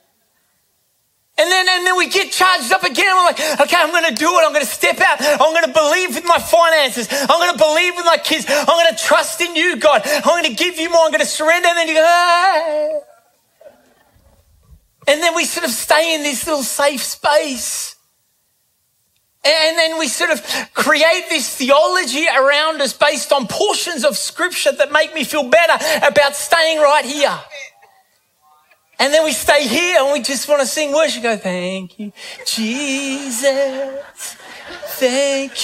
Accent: Australian